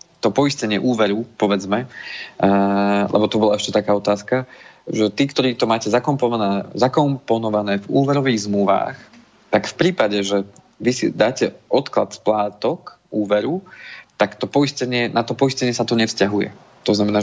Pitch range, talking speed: 105-115 Hz, 145 wpm